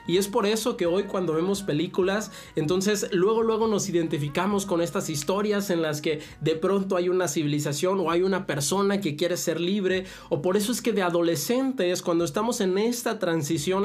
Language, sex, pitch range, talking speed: Spanish, male, 145-185 Hz, 195 wpm